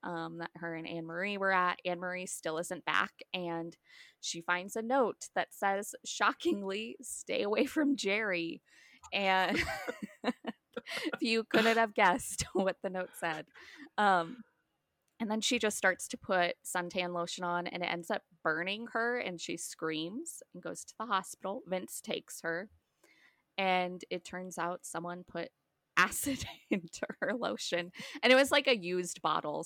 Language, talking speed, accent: English, 160 wpm, American